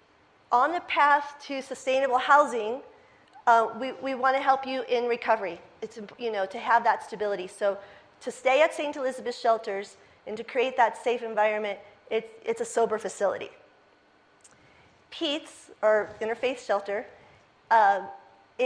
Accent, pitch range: American, 220-275 Hz